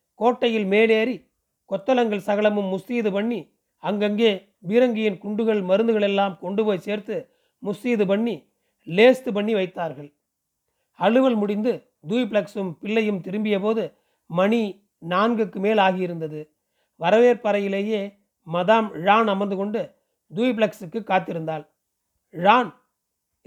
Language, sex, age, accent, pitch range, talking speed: Tamil, male, 40-59, native, 190-225 Hz, 95 wpm